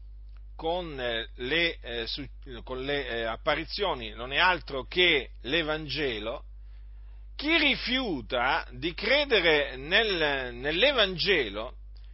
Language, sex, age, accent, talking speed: Italian, male, 40-59, native, 80 wpm